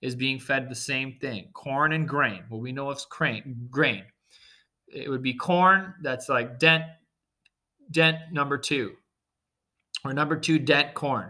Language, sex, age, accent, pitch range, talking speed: English, male, 30-49, American, 130-160 Hz, 160 wpm